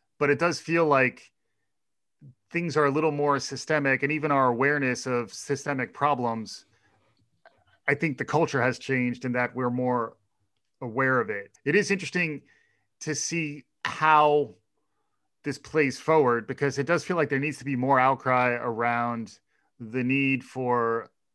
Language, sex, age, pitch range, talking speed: English, male, 30-49, 120-145 Hz, 155 wpm